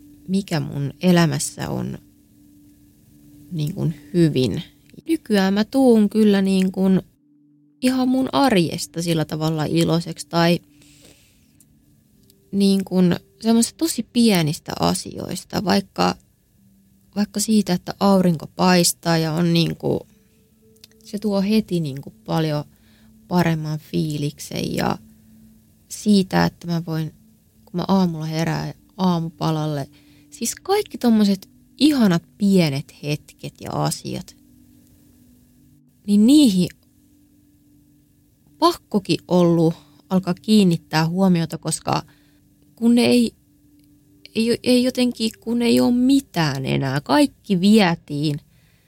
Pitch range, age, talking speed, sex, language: 145-205 Hz, 20-39, 100 wpm, female, Finnish